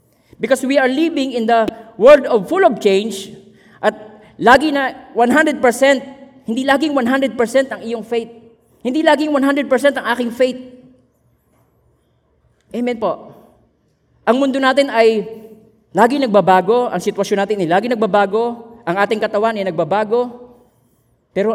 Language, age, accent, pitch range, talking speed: Filipino, 20-39, native, 170-240 Hz, 130 wpm